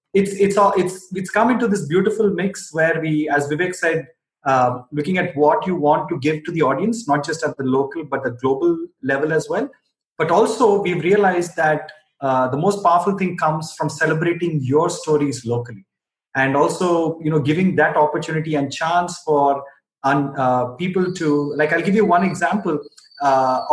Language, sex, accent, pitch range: English, male, Indian, 145-195 Hz